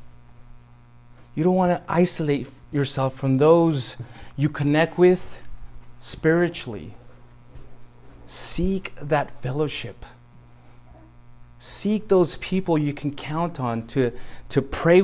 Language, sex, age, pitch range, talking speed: English, male, 30-49, 120-160 Hz, 100 wpm